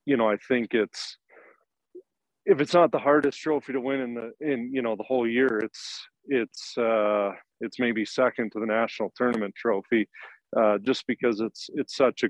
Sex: male